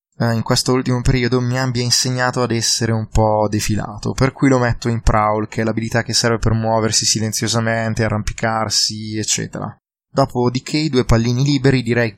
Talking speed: 170 wpm